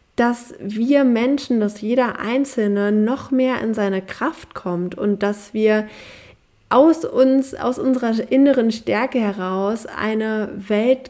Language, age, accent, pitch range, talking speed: German, 20-39, German, 200-240 Hz, 130 wpm